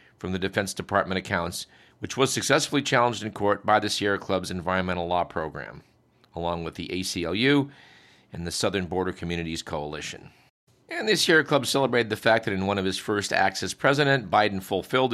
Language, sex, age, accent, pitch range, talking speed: English, male, 50-69, American, 90-110 Hz, 180 wpm